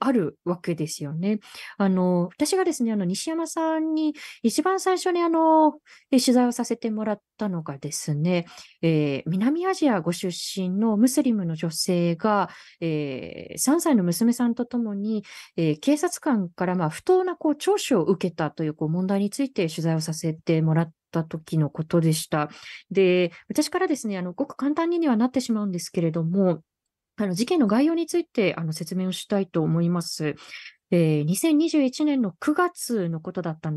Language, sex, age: Japanese, female, 20-39